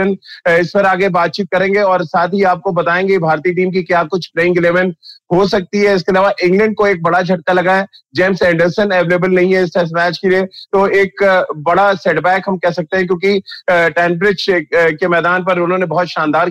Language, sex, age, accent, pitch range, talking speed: Hindi, male, 30-49, native, 175-195 Hz, 70 wpm